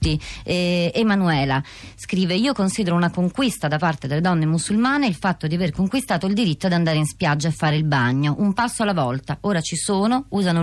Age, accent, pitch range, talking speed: 30-49, native, 150-180 Hz, 200 wpm